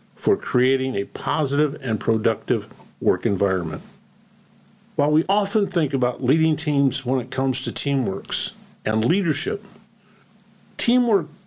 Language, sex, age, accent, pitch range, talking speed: English, male, 50-69, American, 125-175 Hz, 120 wpm